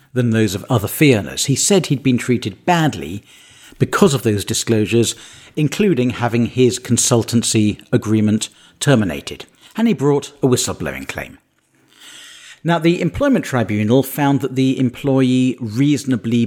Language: English